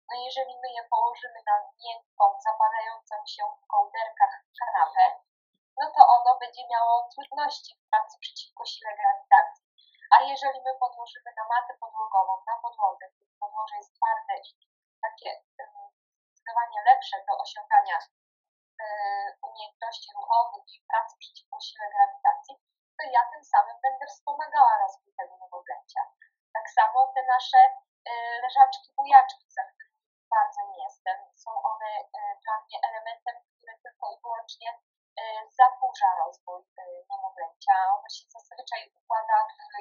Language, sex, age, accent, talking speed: Polish, female, 10-29, native, 120 wpm